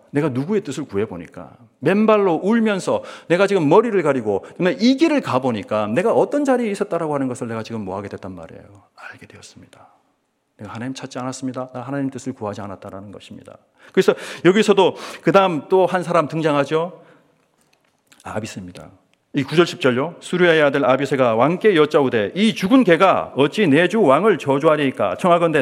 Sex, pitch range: male, 135-200 Hz